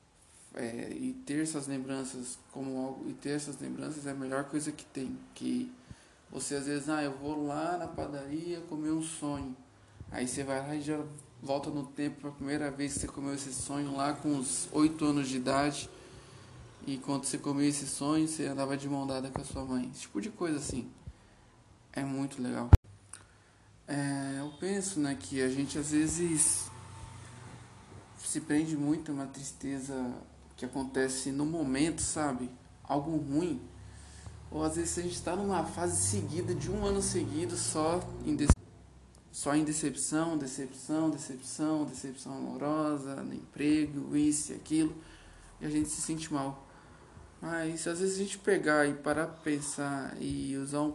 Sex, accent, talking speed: male, Brazilian, 170 wpm